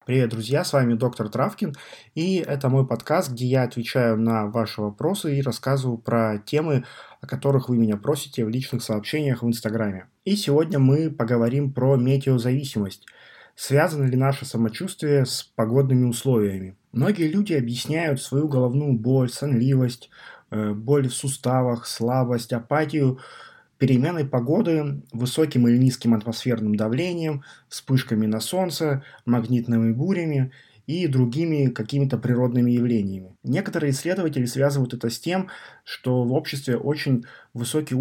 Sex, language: male, Russian